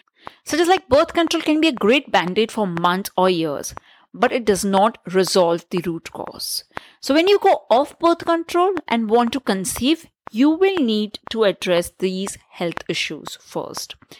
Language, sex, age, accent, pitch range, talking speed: English, female, 50-69, Indian, 185-275 Hz, 180 wpm